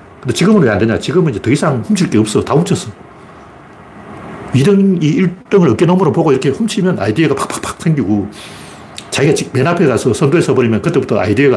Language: Korean